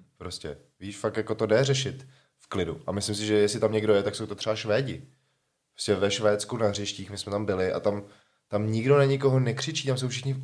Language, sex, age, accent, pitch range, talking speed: Czech, male, 20-39, native, 105-130 Hz, 235 wpm